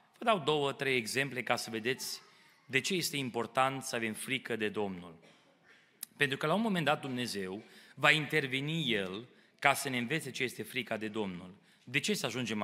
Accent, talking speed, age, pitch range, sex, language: native, 190 wpm, 30-49, 110-150 Hz, male, Romanian